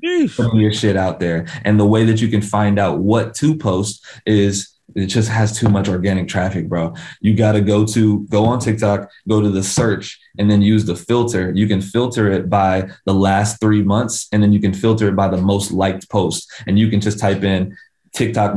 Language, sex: English, male